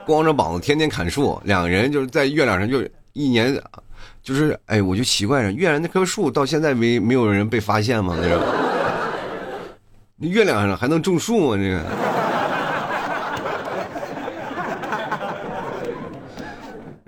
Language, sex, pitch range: Chinese, male, 95-145 Hz